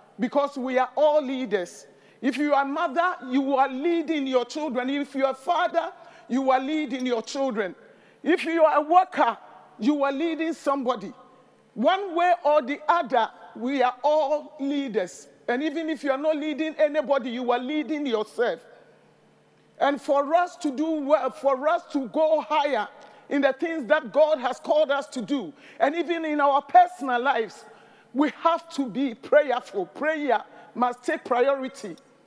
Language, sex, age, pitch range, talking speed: English, male, 50-69, 265-320 Hz, 170 wpm